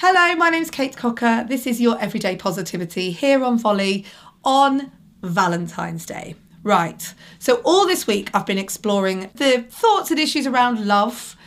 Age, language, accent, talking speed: 30-49, English, British, 160 wpm